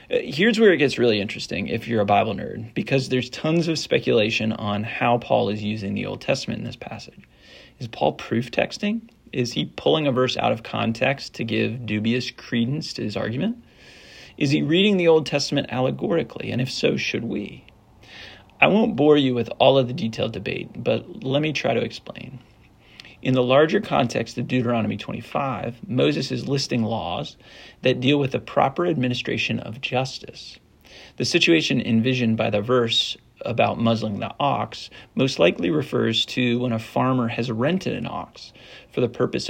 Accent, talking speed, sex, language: American, 180 wpm, male, English